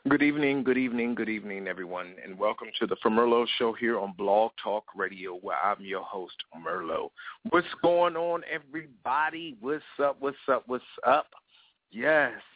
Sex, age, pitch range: male, 40-59, 110-130 Hz